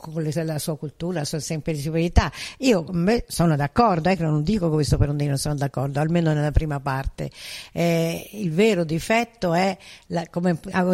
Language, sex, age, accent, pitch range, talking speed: Italian, female, 60-79, native, 155-185 Hz, 175 wpm